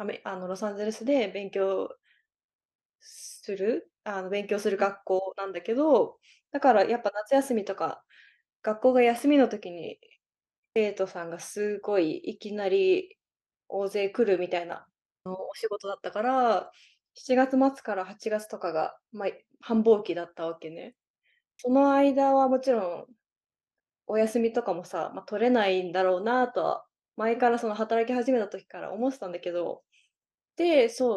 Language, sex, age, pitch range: Japanese, female, 20-39, 195-255 Hz